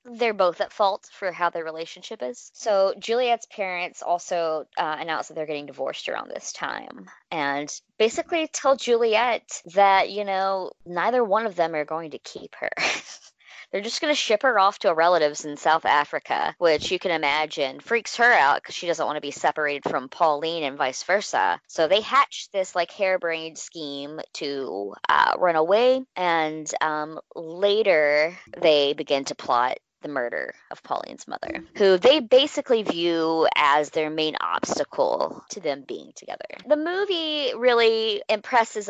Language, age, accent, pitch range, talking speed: English, 20-39, American, 160-245 Hz, 170 wpm